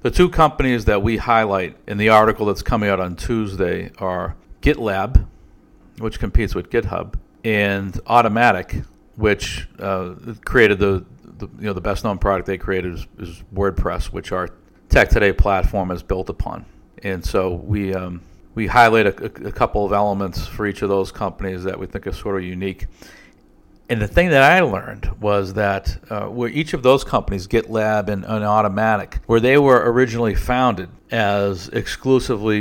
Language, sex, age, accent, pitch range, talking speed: English, male, 50-69, American, 95-115 Hz, 175 wpm